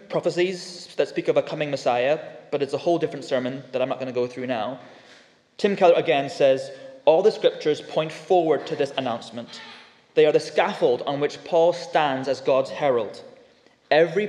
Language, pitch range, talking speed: English, 135-180 Hz, 190 wpm